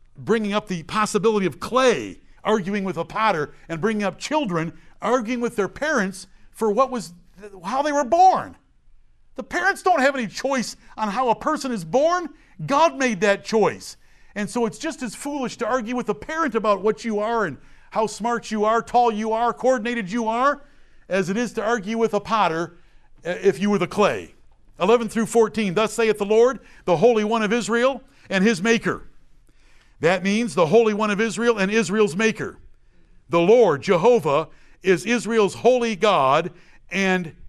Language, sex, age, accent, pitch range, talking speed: English, male, 60-79, American, 175-230 Hz, 180 wpm